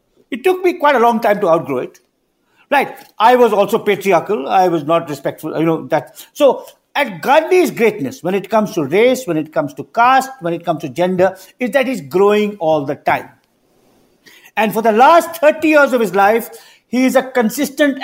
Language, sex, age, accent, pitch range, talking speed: English, male, 50-69, Indian, 195-265 Hz, 205 wpm